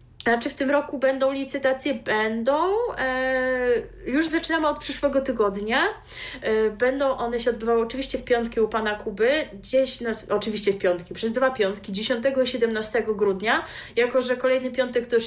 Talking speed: 165 wpm